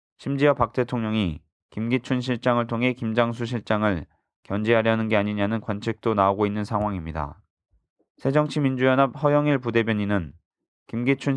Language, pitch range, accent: Korean, 100-125 Hz, native